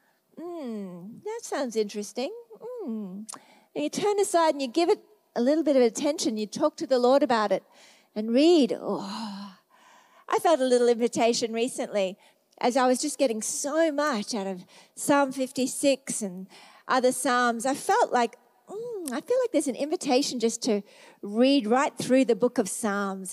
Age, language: 40-59, English